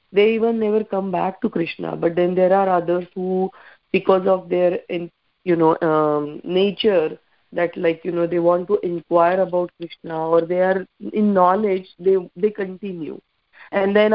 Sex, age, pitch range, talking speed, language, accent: female, 30-49, 170-200 Hz, 170 wpm, English, Indian